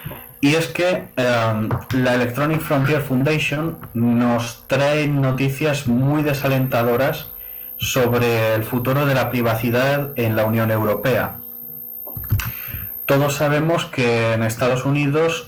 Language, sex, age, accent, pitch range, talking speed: Spanish, male, 30-49, Spanish, 110-135 Hz, 110 wpm